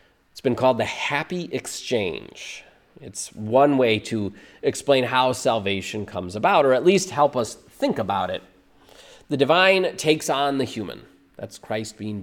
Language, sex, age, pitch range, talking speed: English, male, 30-49, 105-140 Hz, 155 wpm